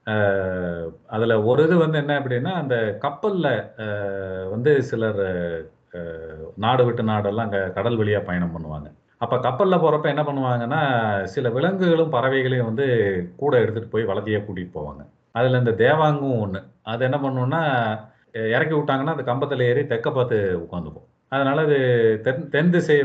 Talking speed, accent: 130 wpm, native